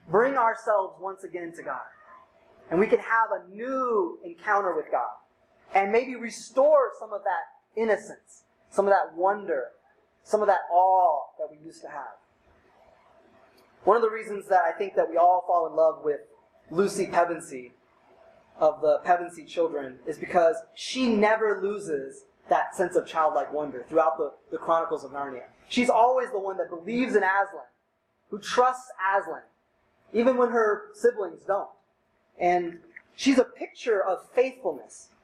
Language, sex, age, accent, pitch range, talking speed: English, male, 20-39, American, 180-260 Hz, 160 wpm